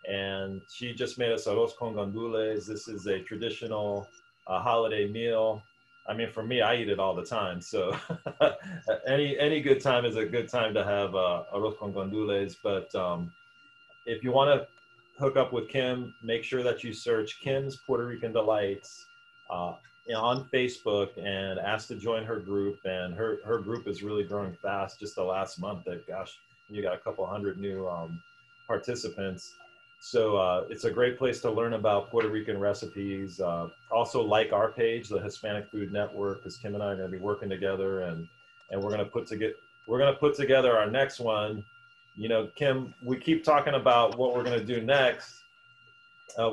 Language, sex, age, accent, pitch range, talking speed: English, male, 30-49, American, 105-145 Hz, 190 wpm